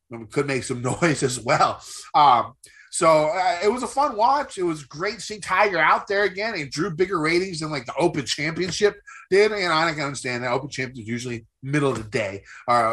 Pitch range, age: 125-180 Hz, 30-49